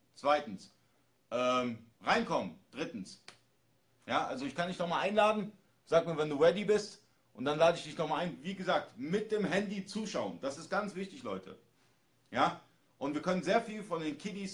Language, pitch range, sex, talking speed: German, 145-190 Hz, male, 185 wpm